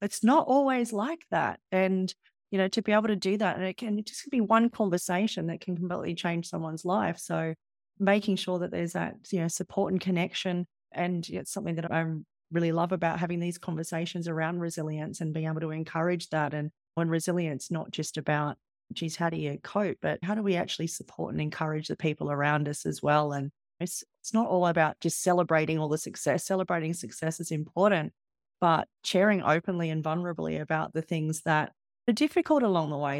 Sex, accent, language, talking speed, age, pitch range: female, Australian, English, 200 wpm, 30-49, 160-185 Hz